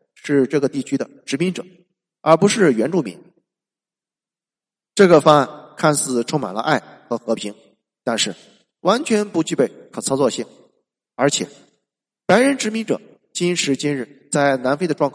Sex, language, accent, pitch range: male, Chinese, native, 130-190 Hz